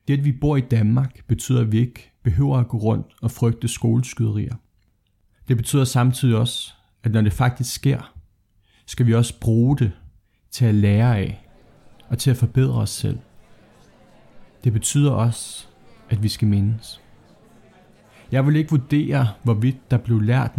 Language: Danish